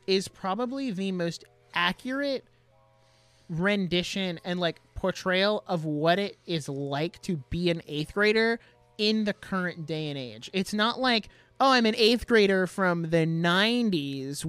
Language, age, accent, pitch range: English, 30-49, American, 155-205 Hz